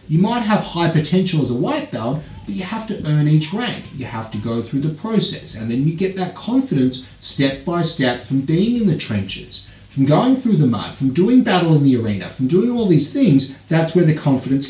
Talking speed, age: 235 wpm, 30-49